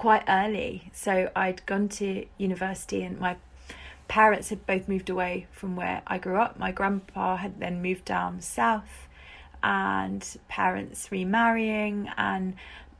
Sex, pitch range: female, 160-205 Hz